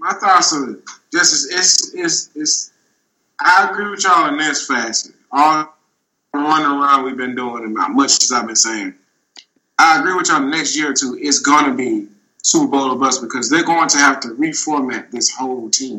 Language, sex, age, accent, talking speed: English, male, 20-39, American, 205 wpm